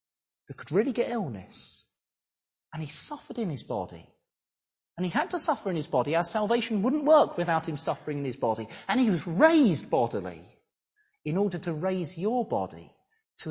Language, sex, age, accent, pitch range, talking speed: English, male, 30-49, British, 160-235 Hz, 180 wpm